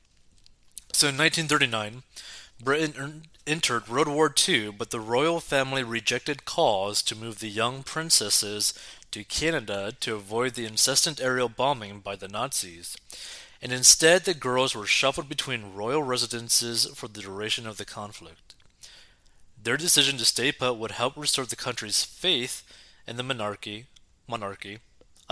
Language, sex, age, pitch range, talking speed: English, male, 30-49, 105-135 Hz, 145 wpm